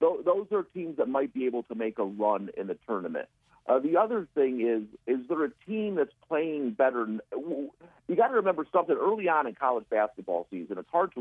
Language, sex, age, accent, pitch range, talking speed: English, male, 50-69, American, 120-175 Hz, 215 wpm